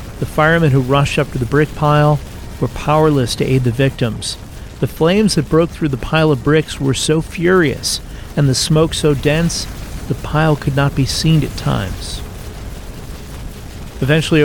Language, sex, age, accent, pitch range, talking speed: English, male, 40-59, American, 125-150 Hz, 170 wpm